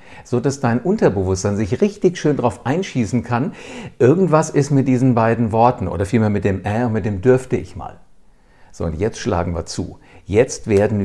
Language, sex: German, male